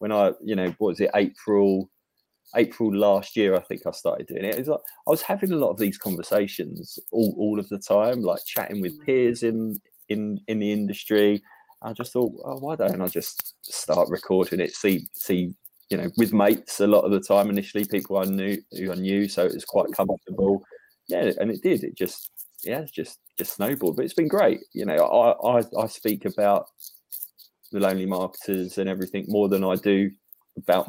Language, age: English, 20-39